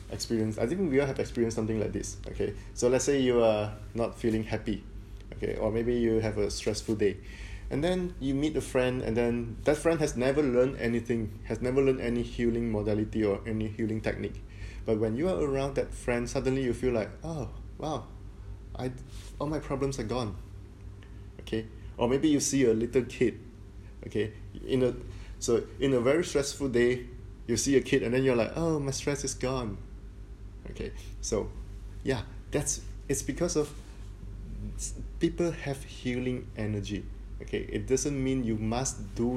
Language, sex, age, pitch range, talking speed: English, male, 20-39, 100-125 Hz, 180 wpm